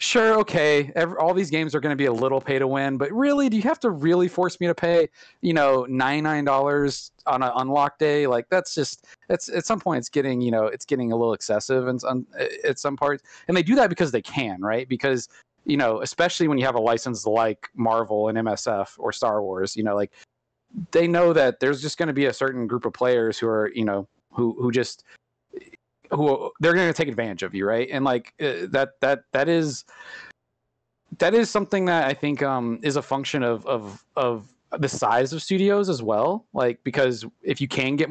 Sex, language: male, English